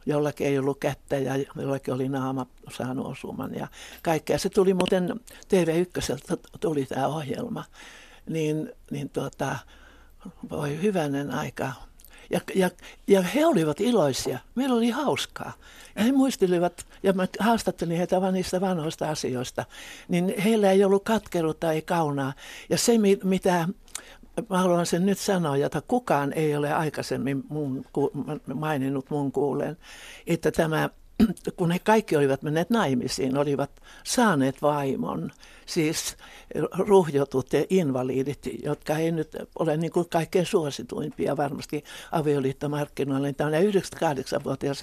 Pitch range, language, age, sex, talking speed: 140-190 Hz, Finnish, 60-79, male, 125 wpm